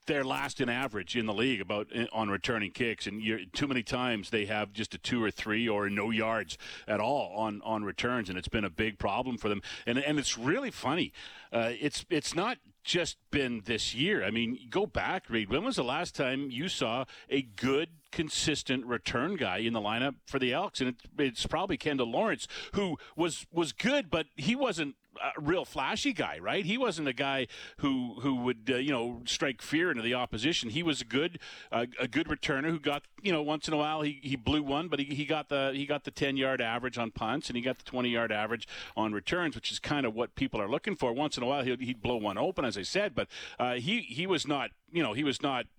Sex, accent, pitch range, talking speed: male, American, 110-145 Hz, 235 wpm